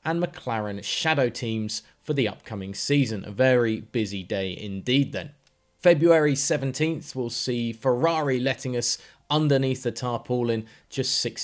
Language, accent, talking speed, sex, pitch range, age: English, British, 135 wpm, male, 110-145 Hz, 20-39